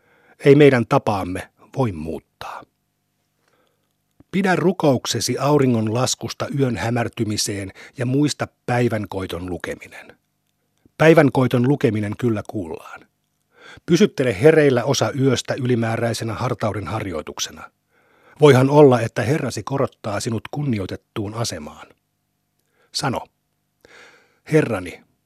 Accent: native